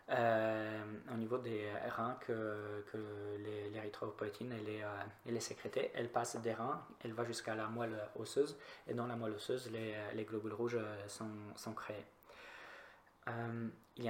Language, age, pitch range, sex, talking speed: French, 20-39, 105-120 Hz, male, 160 wpm